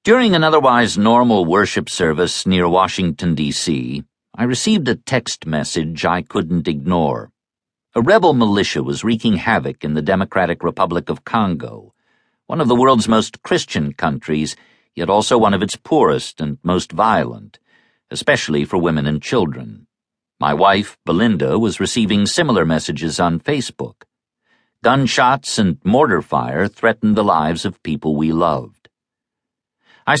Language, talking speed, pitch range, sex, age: English, 140 wpm, 85-120 Hz, male, 50-69